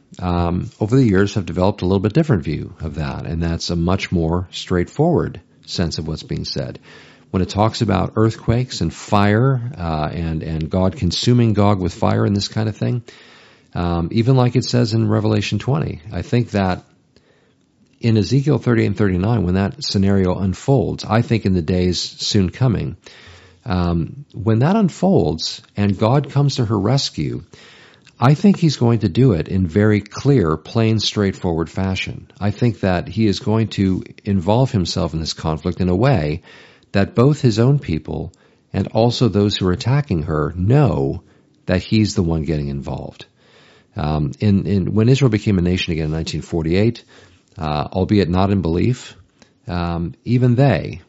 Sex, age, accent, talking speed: male, 50-69, American, 175 wpm